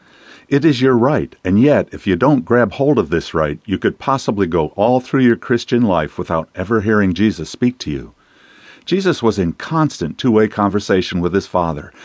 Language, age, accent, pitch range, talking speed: English, 50-69, American, 85-115 Hz, 195 wpm